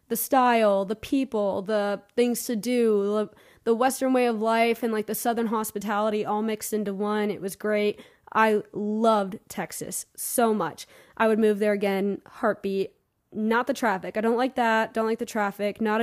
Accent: American